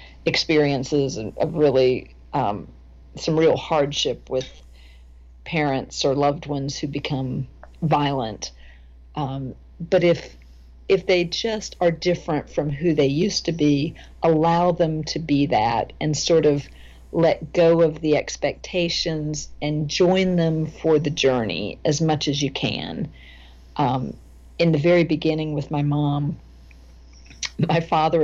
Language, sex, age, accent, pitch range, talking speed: English, female, 50-69, American, 130-170 Hz, 135 wpm